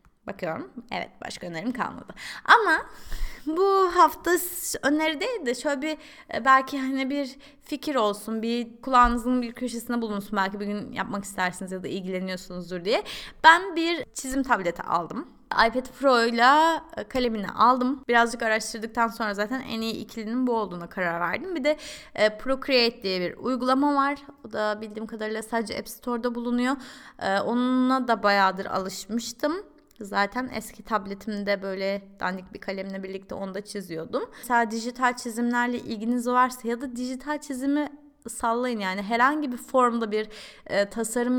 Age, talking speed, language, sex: 20-39, 145 wpm, Turkish, female